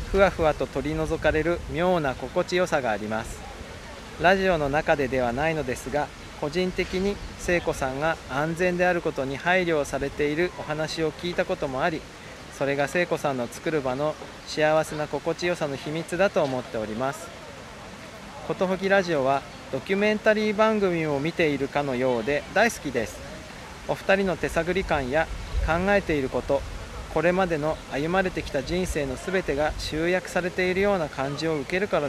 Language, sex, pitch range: Japanese, male, 140-175 Hz